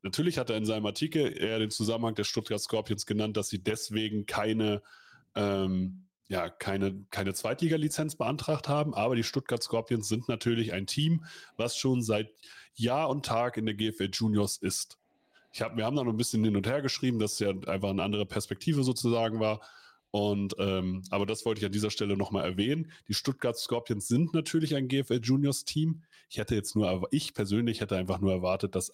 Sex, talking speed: male, 195 wpm